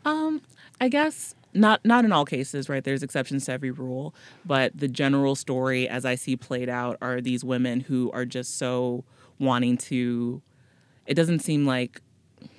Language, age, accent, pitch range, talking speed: English, 30-49, American, 120-135 Hz, 170 wpm